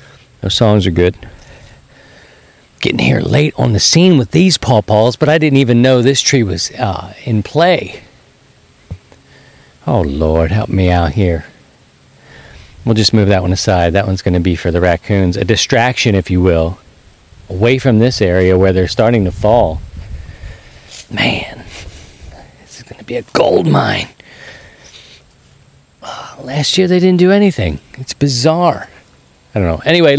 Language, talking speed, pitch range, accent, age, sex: English, 160 wpm, 95-130 Hz, American, 40-59, male